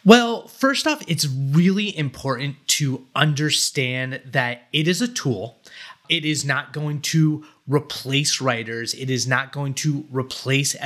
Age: 30-49